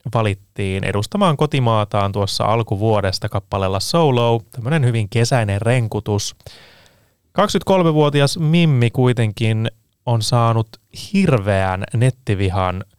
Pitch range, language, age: 110-140 Hz, Finnish, 20-39